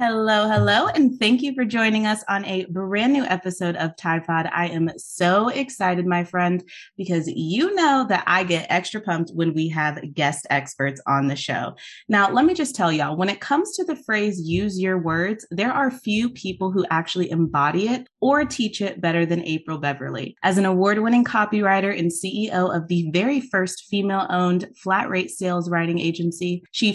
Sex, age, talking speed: female, 20-39, 190 wpm